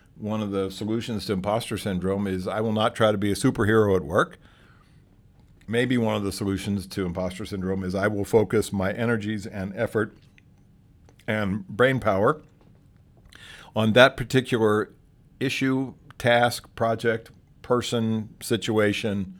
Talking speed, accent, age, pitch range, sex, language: 140 wpm, American, 50-69, 100-135 Hz, male, English